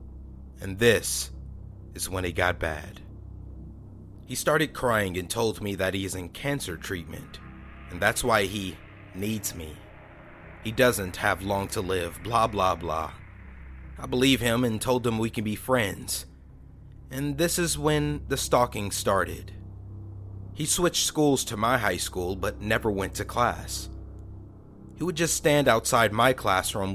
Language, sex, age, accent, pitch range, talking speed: English, male, 30-49, American, 90-125 Hz, 155 wpm